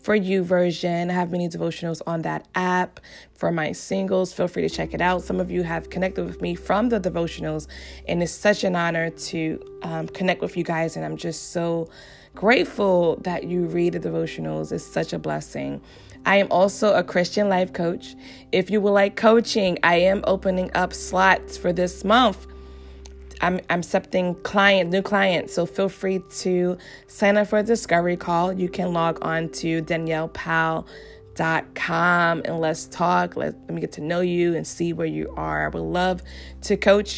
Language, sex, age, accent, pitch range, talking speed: English, female, 20-39, American, 155-190 Hz, 185 wpm